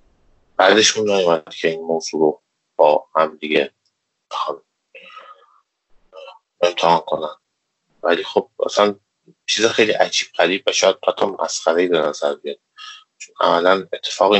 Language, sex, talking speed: Persian, male, 120 wpm